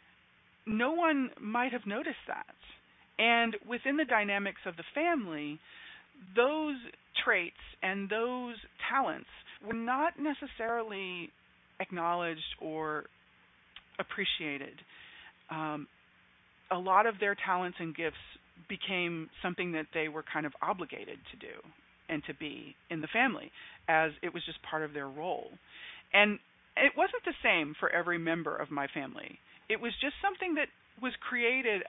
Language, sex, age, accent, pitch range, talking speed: English, female, 40-59, American, 160-250 Hz, 140 wpm